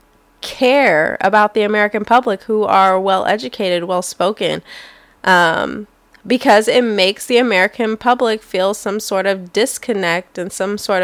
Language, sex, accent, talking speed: English, female, American, 140 wpm